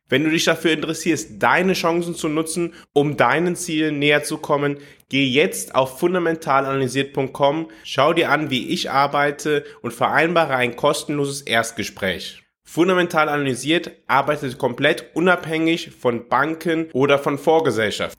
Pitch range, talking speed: 130-160 Hz, 130 wpm